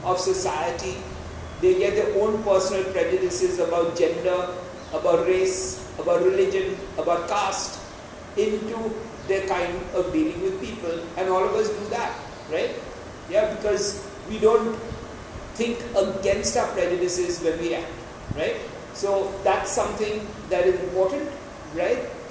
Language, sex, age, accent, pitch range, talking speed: English, male, 50-69, Indian, 180-220 Hz, 130 wpm